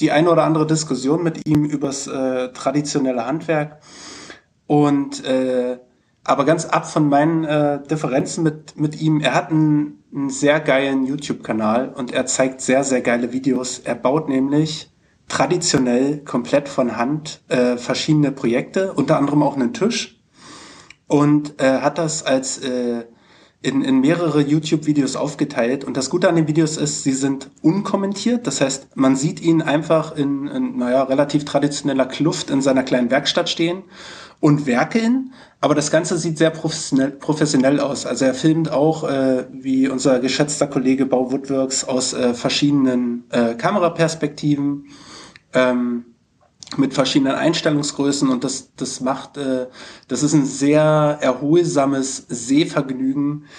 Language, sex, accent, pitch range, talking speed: German, male, German, 130-155 Hz, 150 wpm